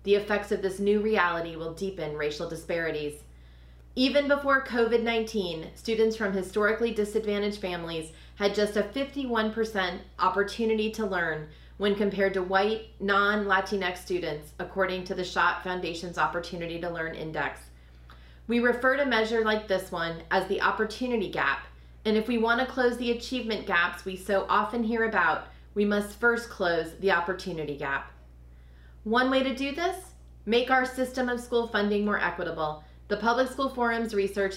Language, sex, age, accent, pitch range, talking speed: English, female, 30-49, American, 175-220 Hz, 155 wpm